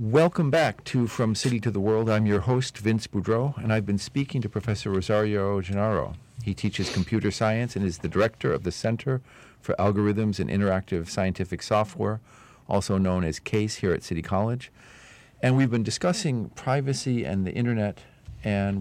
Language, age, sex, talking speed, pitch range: English, 50-69, male, 175 wpm, 85-115 Hz